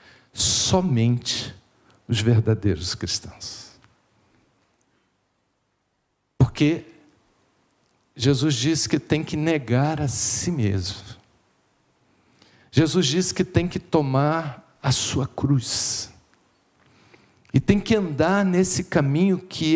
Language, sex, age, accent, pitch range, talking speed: Portuguese, male, 50-69, Brazilian, 110-180 Hz, 90 wpm